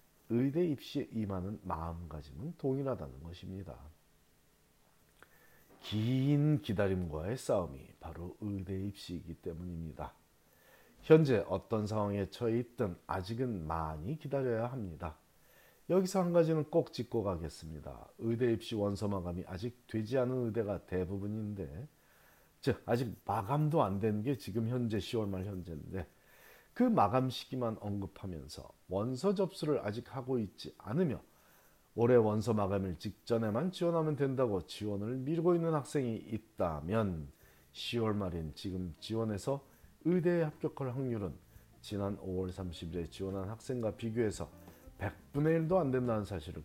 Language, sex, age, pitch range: Korean, male, 40-59, 90-130 Hz